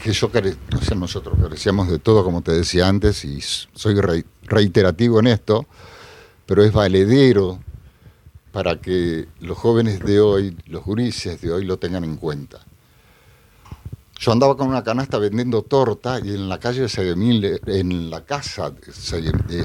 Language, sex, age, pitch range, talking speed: Spanish, male, 50-69, 90-115 Hz, 155 wpm